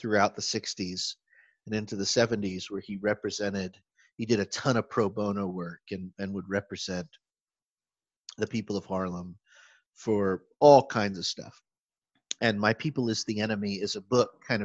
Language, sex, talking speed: English, male, 170 wpm